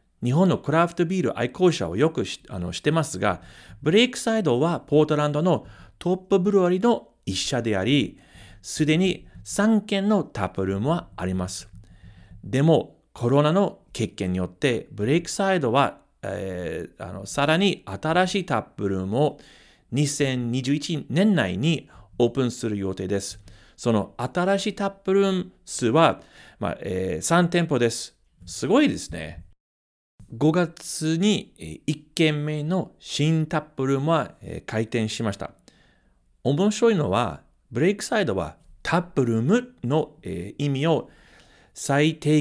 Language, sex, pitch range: Japanese, male, 105-175 Hz